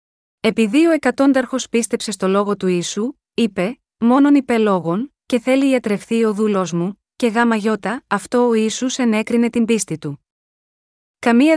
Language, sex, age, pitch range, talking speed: Greek, female, 20-39, 200-245 Hz, 145 wpm